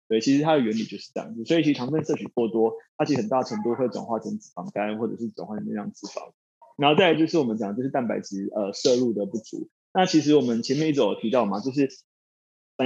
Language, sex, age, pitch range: Chinese, male, 20-39, 115-160 Hz